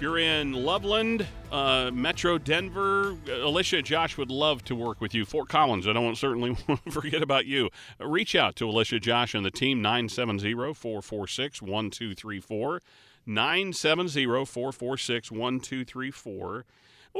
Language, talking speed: English, 130 wpm